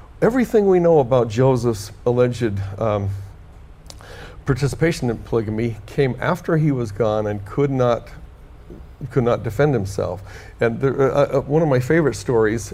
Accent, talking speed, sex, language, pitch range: American, 145 wpm, male, English, 105-145 Hz